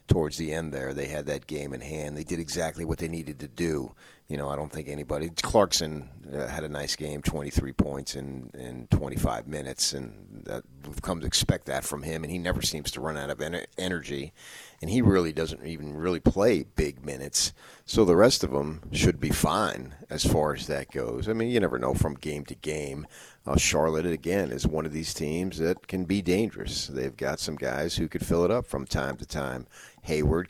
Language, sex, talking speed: English, male, 215 wpm